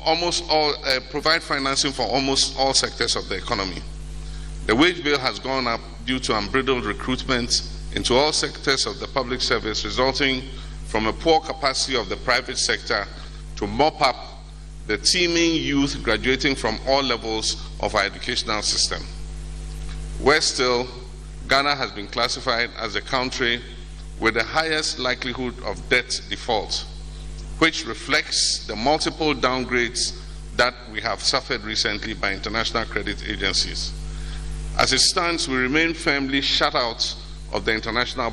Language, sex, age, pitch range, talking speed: English, male, 50-69, 120-150 Hz, 145 wpm